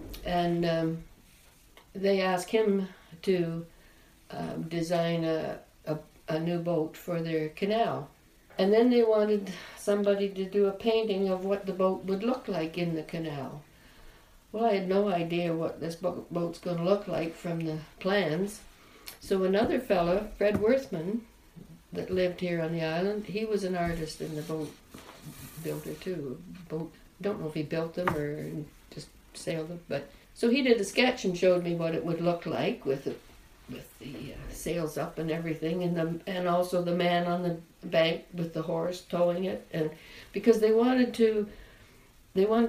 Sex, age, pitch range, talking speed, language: female, 60-79, 165-200 Hz, 175 wpm, English